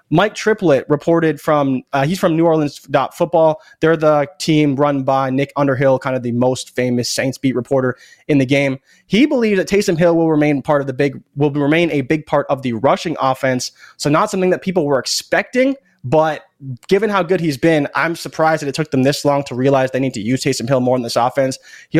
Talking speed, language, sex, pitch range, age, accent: 220 wpm, English, male, 140-170 Hz, 20-39, American